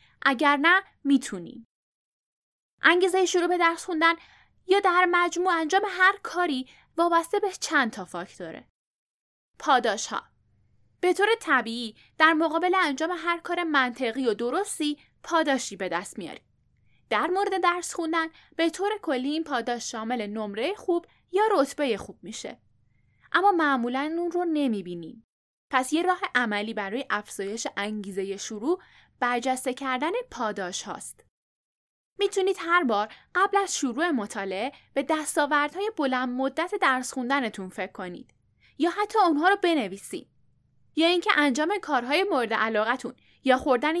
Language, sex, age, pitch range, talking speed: Persian, female, 10-29, 240-355 Hz, 135 wpm